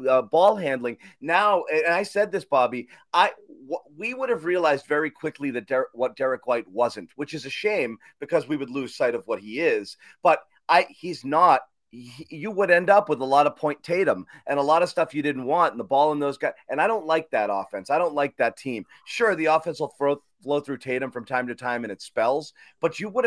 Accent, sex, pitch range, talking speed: American, male, 120-160 Hz, 235 wpm